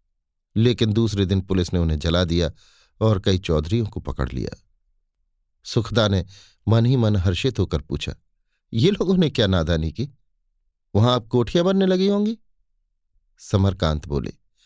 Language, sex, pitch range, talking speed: Hindi, male, 90-125 Hz, 145 wpm